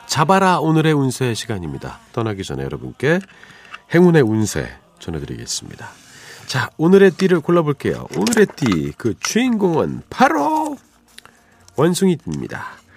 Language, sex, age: Korean, male, 40-59